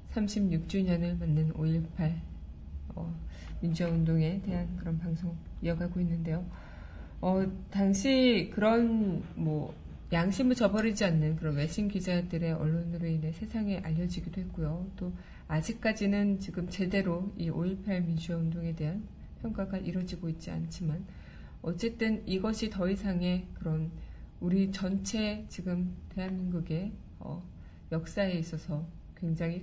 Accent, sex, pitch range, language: native, female, 160-195 Hz, Korean